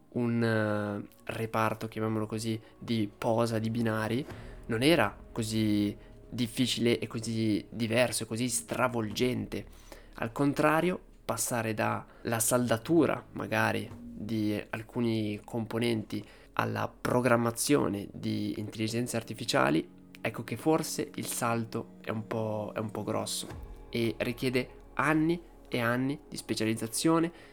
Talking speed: 105 wpm